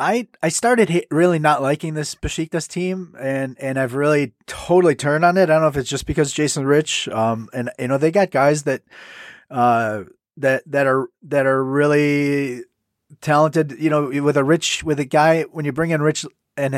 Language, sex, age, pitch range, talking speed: English, male, 30-49, 130-160 Hz, 200 wpm